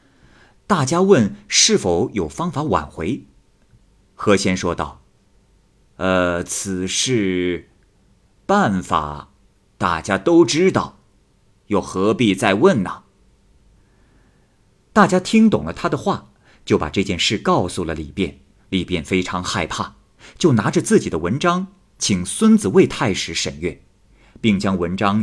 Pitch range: 90-135 Hz